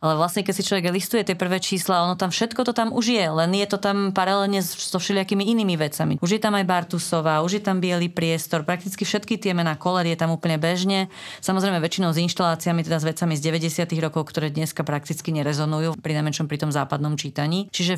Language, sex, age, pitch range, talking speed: Slovak, female, 30-49, 160-195 Hz, 215 wpm